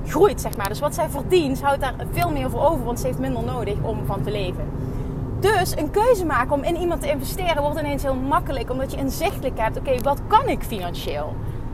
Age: 30-49